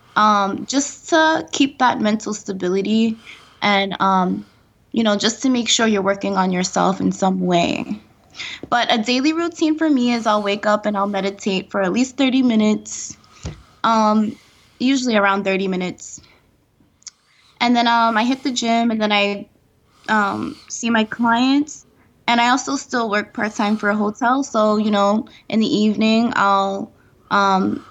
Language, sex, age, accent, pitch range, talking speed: English, female, 20-39, American, 205-255 Hz, 165 wpm